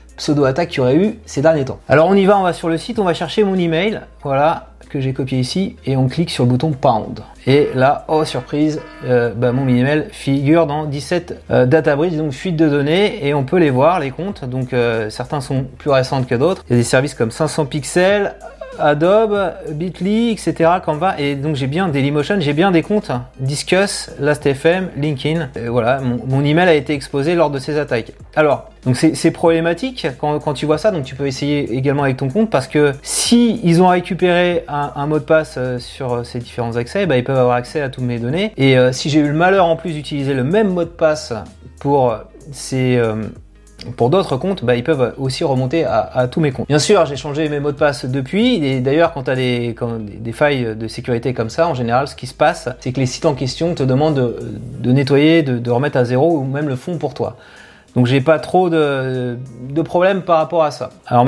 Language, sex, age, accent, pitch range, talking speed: French, male, 30-49, French, 130-165 Hz, 235 wpm